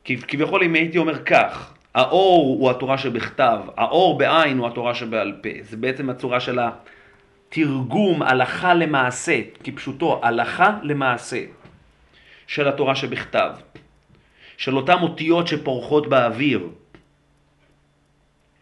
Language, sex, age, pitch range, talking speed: Hebrew, male, 40-59, 130-165 Hz, 110 wpm